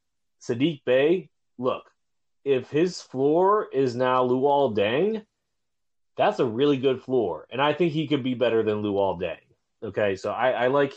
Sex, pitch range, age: male, 100-130 Hz, 30-49